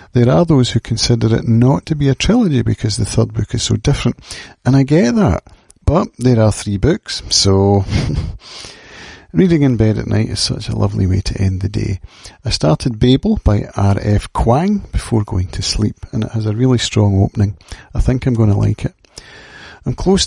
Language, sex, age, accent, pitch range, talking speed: English, male, 50-69, British, 105-125 Hz, 200 wpm